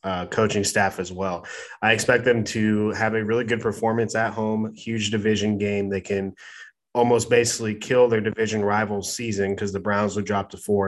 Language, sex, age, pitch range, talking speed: English, male, 20-39, 100-115 Hz, 195 wpm